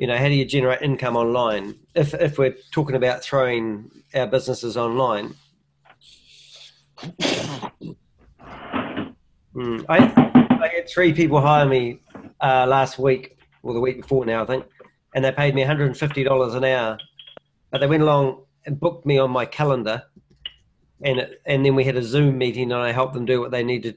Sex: male